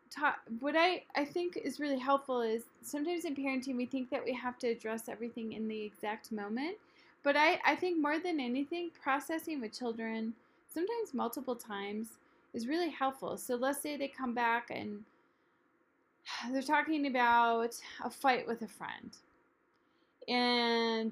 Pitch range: 215-285 Hz